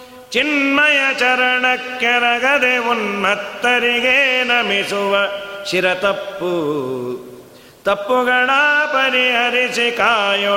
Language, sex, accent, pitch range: Kannada, male, native, 200-255 Hz